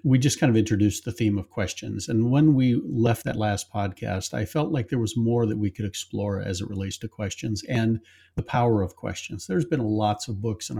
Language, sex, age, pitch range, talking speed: English, male, 50-69, 100-120 Hz, 235 wpm